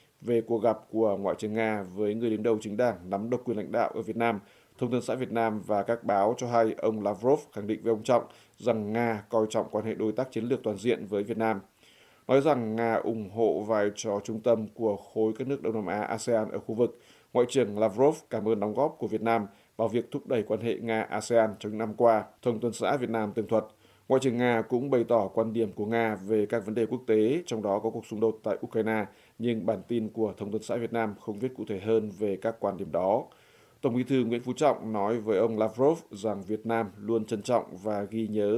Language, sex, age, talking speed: Vietnamese, male, 20-39, 255 wpm